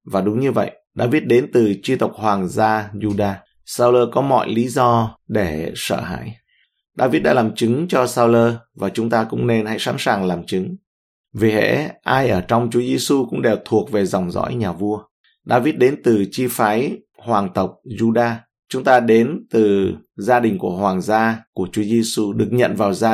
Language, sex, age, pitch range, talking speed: Vietnamese, male, 20-39, 105-120 Hz, 195 wpm